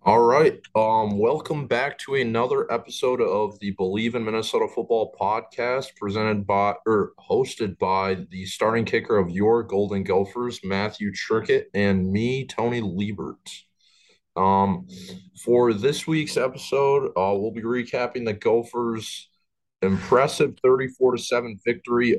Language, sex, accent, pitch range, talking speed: English, male, American, 100-125 Hz, 130 wpm